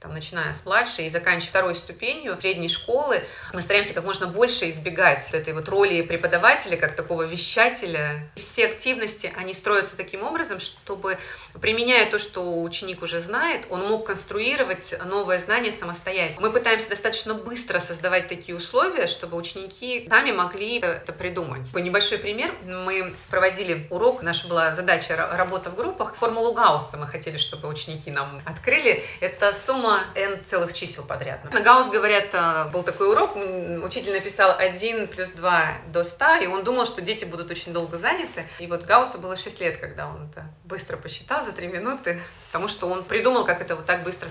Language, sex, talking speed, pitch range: Russian, female, 175 wpm, 170-225 Hz